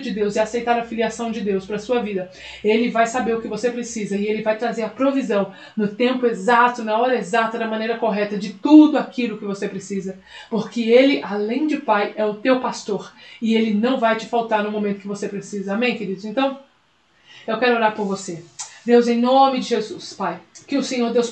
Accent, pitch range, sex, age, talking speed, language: Brazilian, 225-270 Hz, female, 20-39, 215 wpm, Portuguese